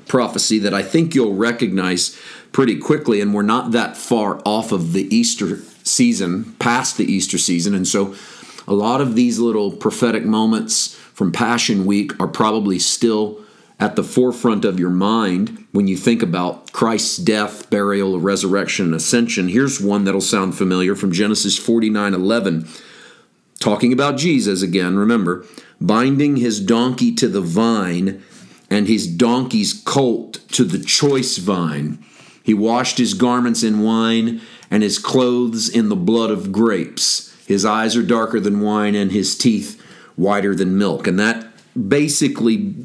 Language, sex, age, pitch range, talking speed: English, male, 40-59, 100-125 Hz, 155 wpm